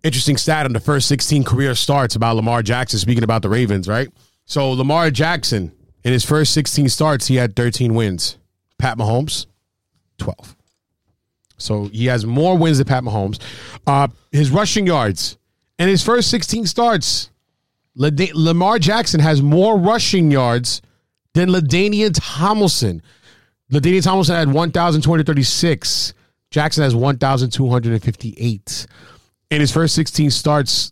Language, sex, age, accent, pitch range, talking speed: English, male, 30-49, American, 115-155 Hz, 135 wpm